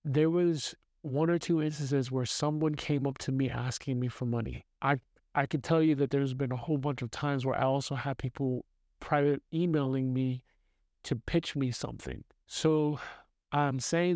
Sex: male